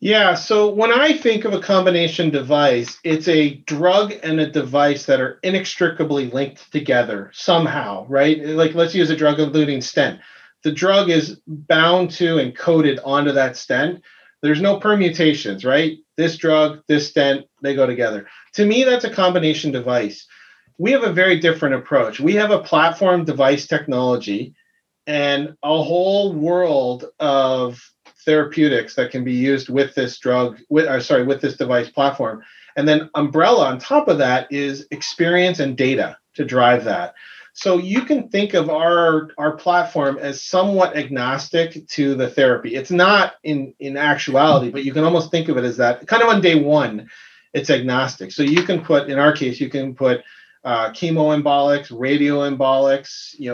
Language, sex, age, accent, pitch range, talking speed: English, male, 40-59, American, 135-175 Hz, 170 wpm